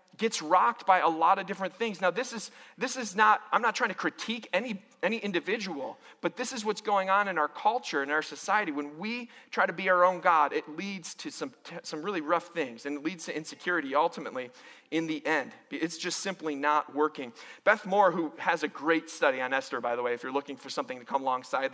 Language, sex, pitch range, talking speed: English, male, 140-195 Hz, 235 wpm